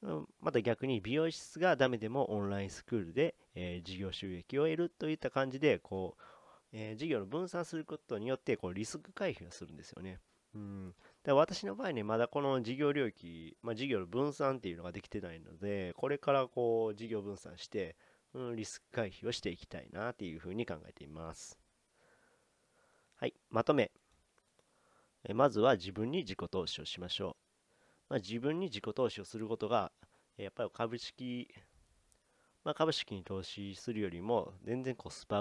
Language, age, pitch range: Japanese, 40-59, 95-140 Hz